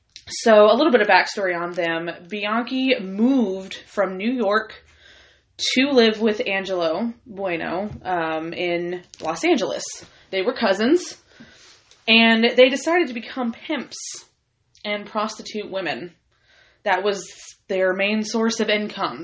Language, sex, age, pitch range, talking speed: English, female, 20-39, 180-220 Hz, 130 wpm